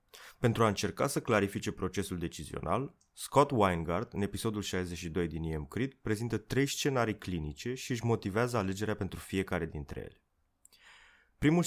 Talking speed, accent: 140 wpm, native